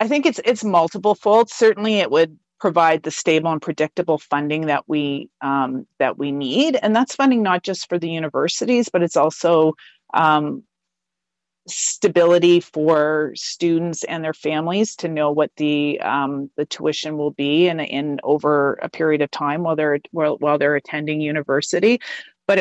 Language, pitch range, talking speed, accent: English, 150-185 Hz, 165 wpm, American